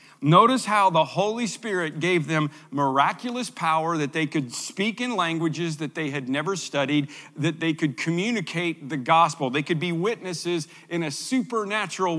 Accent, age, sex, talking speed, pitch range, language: American, 50-69, male, 165 wpm, 150-210 Hz, English